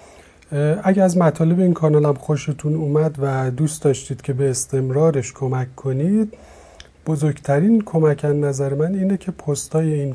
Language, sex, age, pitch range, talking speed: Persian, male, 30-49, 130-160 Hz, 135 wpm